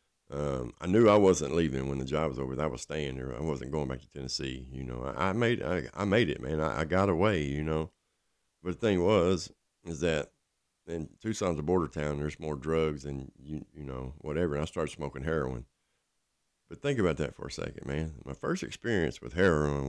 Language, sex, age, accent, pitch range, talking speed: English, male, 50-69, American, 70-90 Hz, 225 wpm